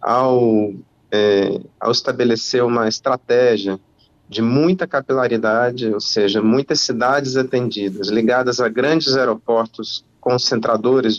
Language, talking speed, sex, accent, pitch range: Portuguese, 100 wpm, male, Brazilian, 110-135 Hz